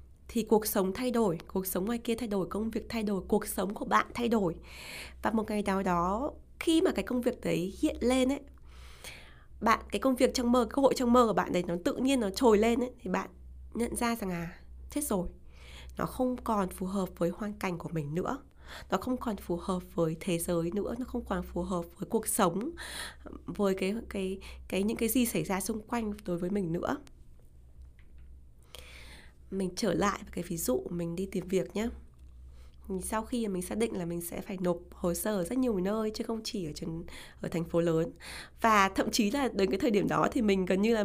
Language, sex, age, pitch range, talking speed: Vietnamese, female, 20-39, 170-225 Hz, 230 wpm